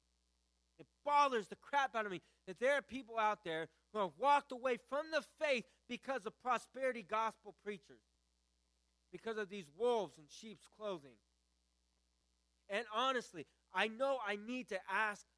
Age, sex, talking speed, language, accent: 20-39, male, 155 wpm, English, American